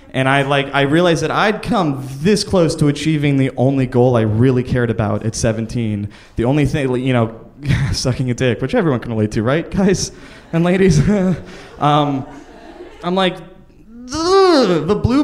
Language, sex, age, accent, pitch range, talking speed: English, male, 20-39, American, 120-160 Hz, 170 wpm